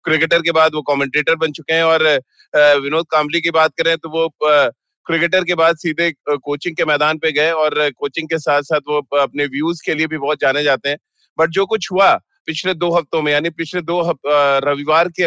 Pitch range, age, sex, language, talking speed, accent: 150-170 Hz, 30-49, male, Hindi, 210 wpm, native